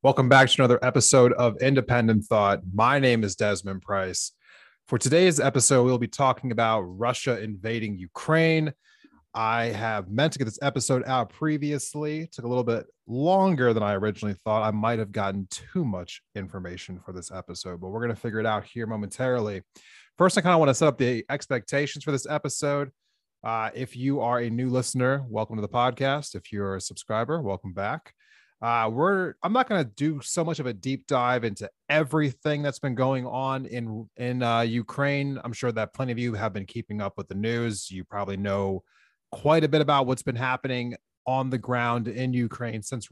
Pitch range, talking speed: 110-135 Hz, 200 wpm